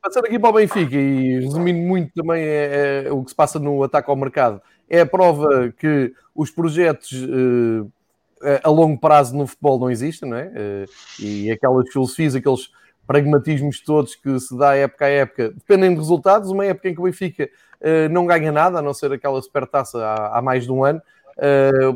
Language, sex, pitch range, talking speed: Portuguese, male, 140-170 Hz, 185 wpm